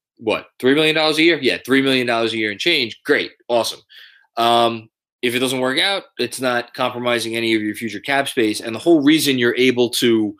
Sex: male